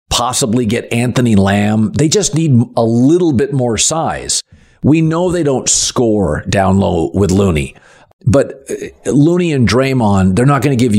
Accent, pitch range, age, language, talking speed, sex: American, 105-130 Hz, 50-69, English, 165 wpm, male